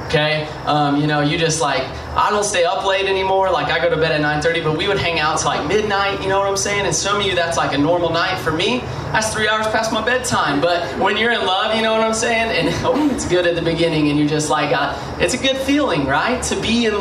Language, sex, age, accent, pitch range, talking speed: English, male, 20-39, American, 165-235 Hz, 275 wpm